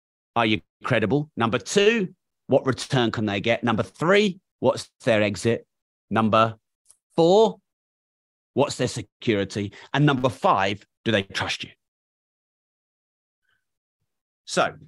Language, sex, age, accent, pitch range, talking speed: English, male, 30-49, British, 120-170 Hz, 115 wpm